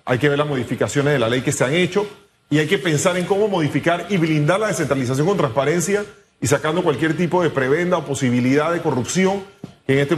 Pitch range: 140-180 Hz